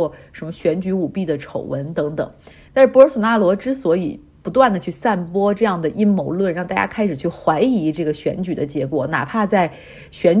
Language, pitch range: Chinese, 160-215 Hz